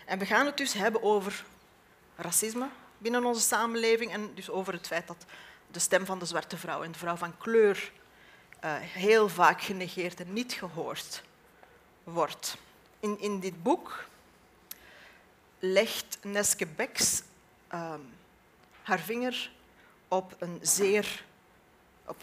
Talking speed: 135 wpm